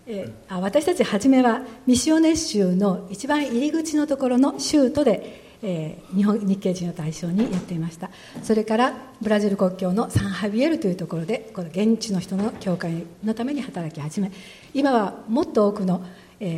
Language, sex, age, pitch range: Japanese, female, 60-79, 185-245 Hz